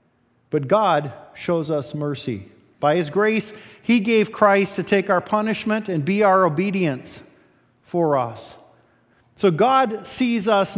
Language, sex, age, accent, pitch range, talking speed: English, male, 50-69, American, 135-195 Hz, 140 wpm